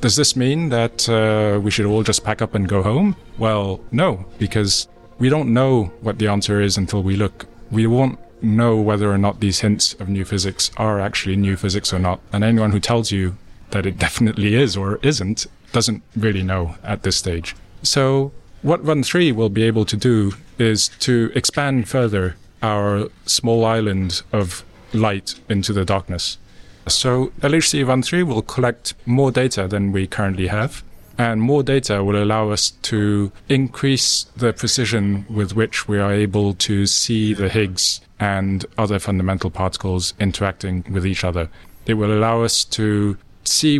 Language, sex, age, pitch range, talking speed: English, male, 30-49, 95-115 Hz, 175 wpm